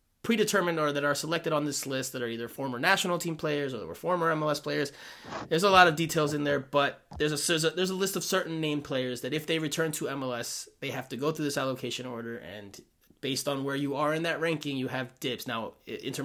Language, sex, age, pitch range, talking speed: English, male, 30-49, 135-175 Hz, 250 wpm